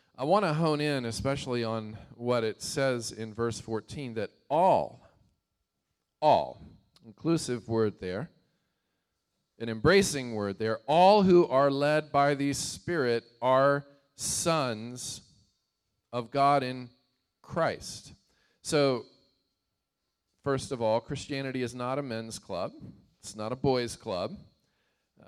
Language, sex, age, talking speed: English, male, 40-59, 125 wpm